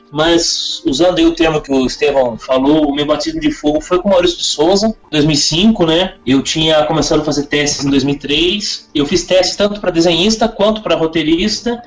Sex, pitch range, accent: male, 145-200 Hz, Brazilian